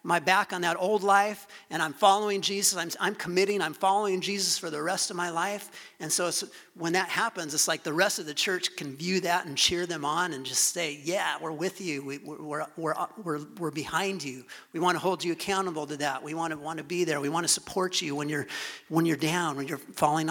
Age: 40-59